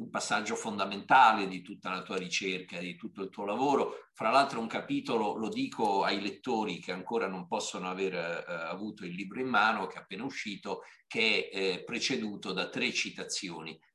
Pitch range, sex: 105-175 Hz, male